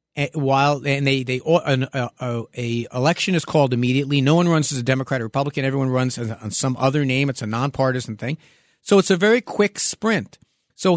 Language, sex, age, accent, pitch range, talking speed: English, male, 50-69, American, 130-175 Hz, 220 wpm